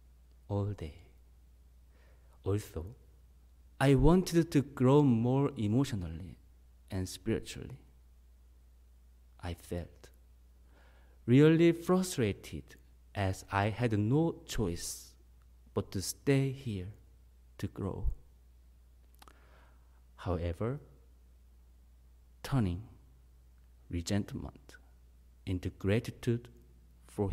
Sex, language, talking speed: male, English, 70 wpm